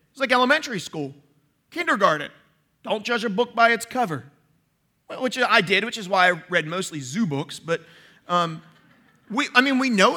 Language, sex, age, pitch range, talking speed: English, male, 30-49, 170-240 Hz, 170 wpm